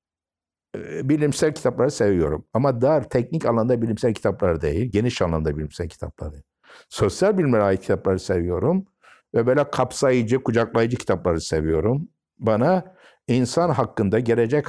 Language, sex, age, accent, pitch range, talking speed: Turkish, male, 60-79, native, 90-130 Hz, 120 wpm